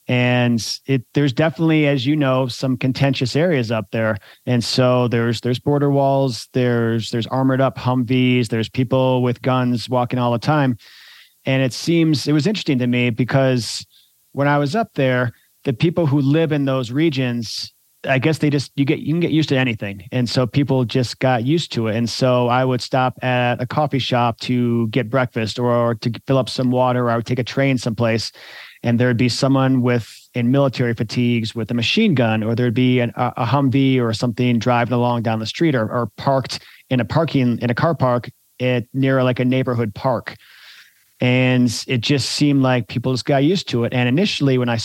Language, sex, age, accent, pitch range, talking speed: English, male, 30-49, American, 120-135 Hz, 205 wpm